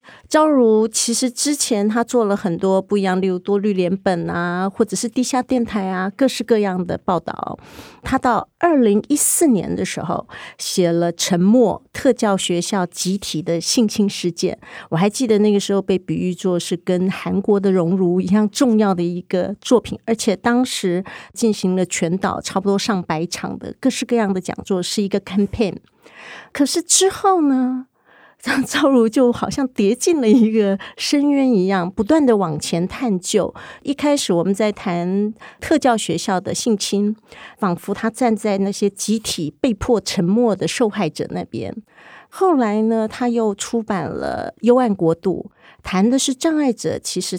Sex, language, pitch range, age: female, Chinese, 190-245 Hz, 40-59